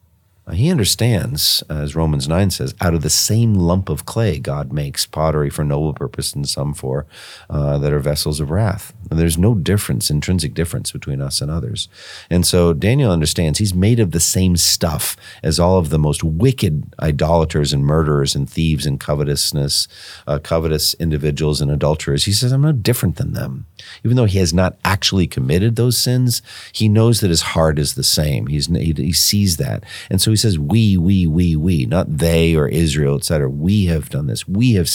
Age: 50-69